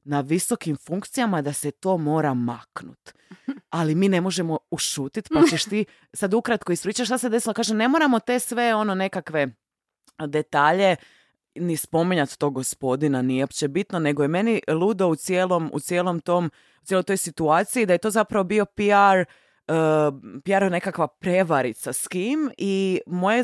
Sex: female